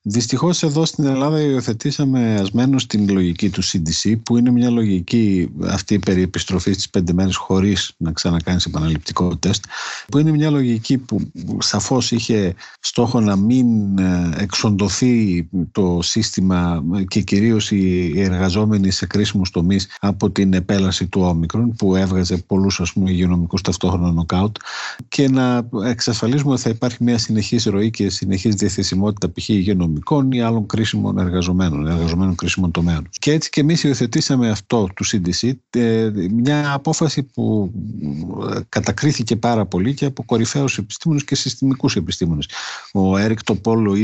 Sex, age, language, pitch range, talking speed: male, 50-69, Greek, 90-120 Hz, 140 wpm